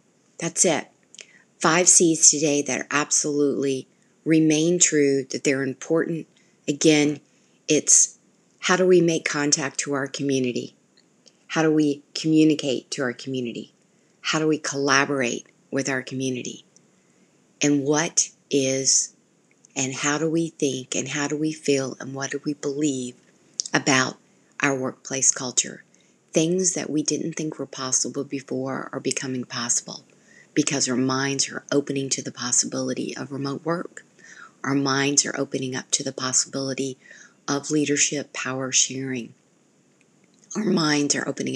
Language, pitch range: English, 135-150 Hz